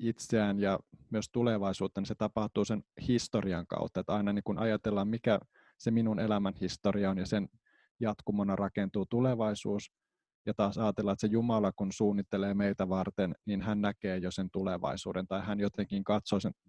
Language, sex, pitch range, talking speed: Finnish, male, 100-115 Hz, 170 wpm